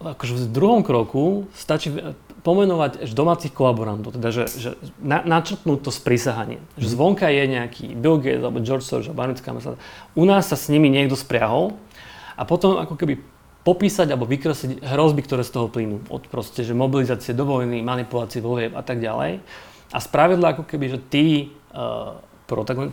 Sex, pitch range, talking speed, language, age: male, 120-150 Hz, 160 wpm, Slovak, 30-49